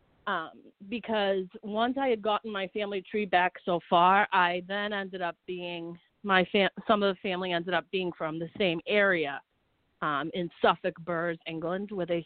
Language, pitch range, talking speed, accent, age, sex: English, 170-205 Hz, 180 wpm, American, 40-59, female